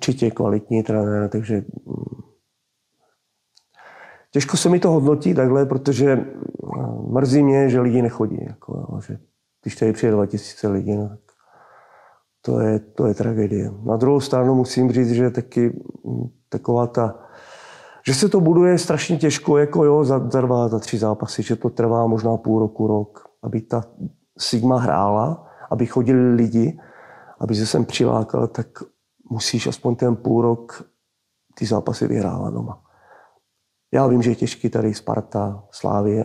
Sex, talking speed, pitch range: male, 140 wpm, 110-125 Hz